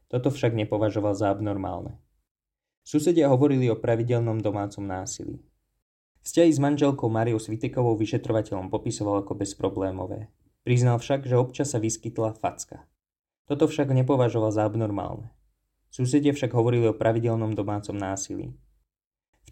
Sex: male